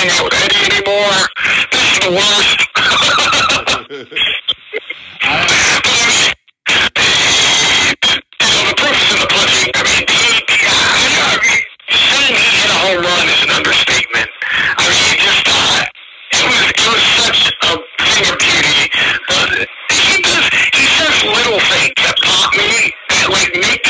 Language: English